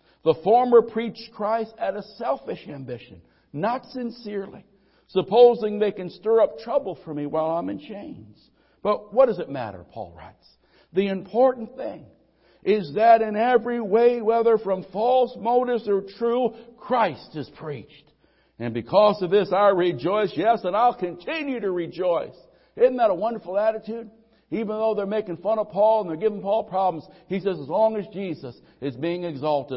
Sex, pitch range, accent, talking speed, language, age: male, 165-225 Hz, American, 170 wpm, English, 60-79